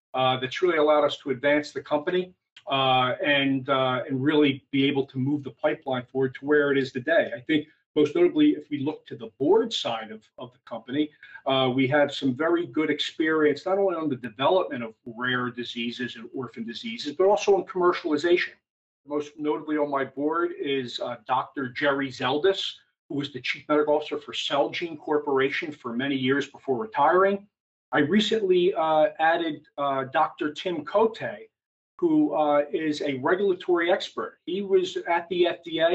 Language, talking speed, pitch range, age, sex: English, 175 wpm, 135-190 Hz, 40-59, male